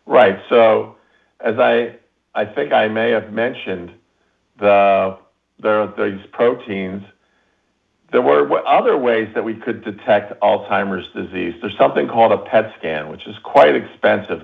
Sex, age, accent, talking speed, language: male, 50-69, American, 145 wpm, English